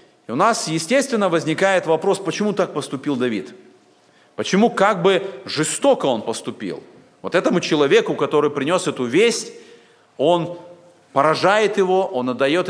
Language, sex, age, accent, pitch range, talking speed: Russian, male, 40-59, native, 155-220 Hz, 130 wpm